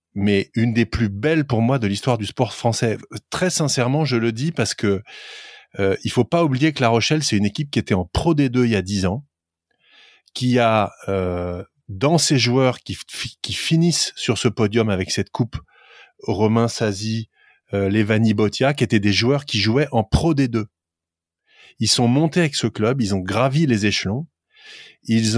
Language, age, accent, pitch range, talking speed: French, 30-49, French, 100-140 Hz, 190 wpm